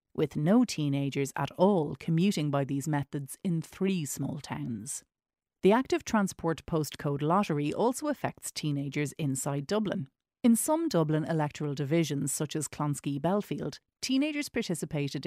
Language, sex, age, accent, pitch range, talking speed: English, female, 40-59, Irish, 140-185 Hz, 130 wpm